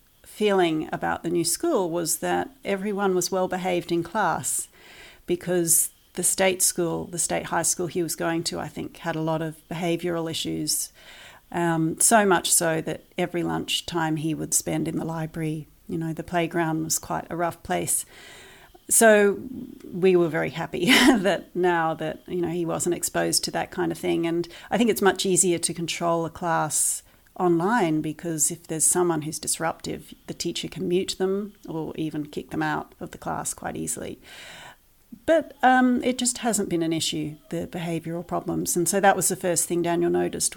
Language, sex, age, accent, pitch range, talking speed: English, female, 40-59, Australian, 165-190 Hz, 185 wpm